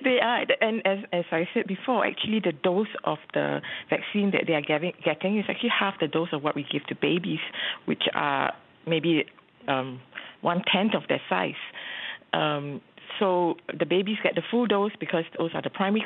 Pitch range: 155-200 Hz